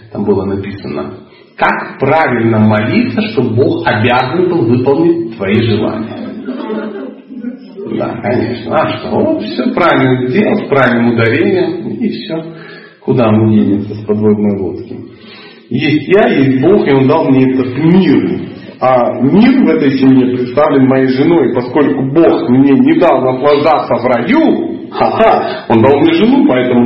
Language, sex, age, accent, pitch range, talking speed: Russian, male, 40-59, native, 110-145 Hz, 145 wpm